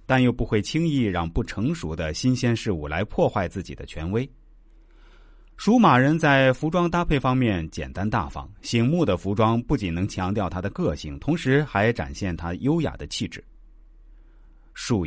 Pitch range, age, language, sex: 90-135 Hz, 30-49, Chinese, male